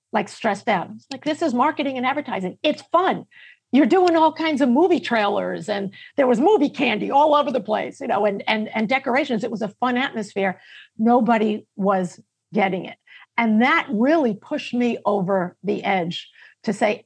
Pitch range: 205-255 Hz